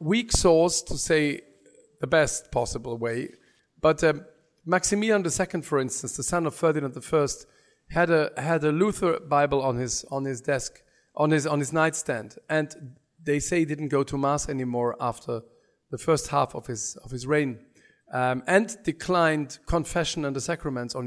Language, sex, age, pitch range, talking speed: English, male, 50-69, 135-170 Hz, 175 wpm